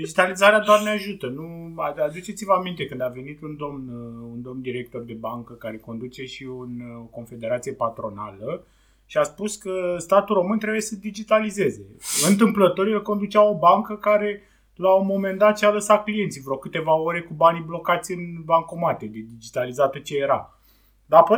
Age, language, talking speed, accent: 30-49, Romanian, 165 wpm, native